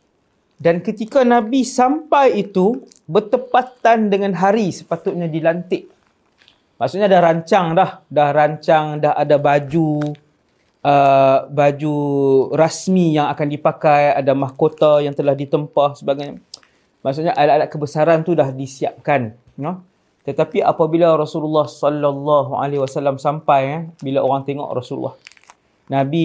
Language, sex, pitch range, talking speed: English, male, 130-155 Hz, 110 wpm